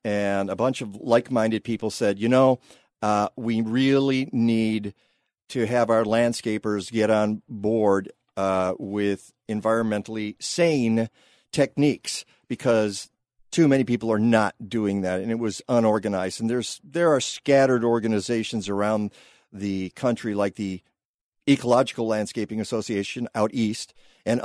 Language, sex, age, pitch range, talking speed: English, male, 50-69, 105-130 Hz, 135 wpm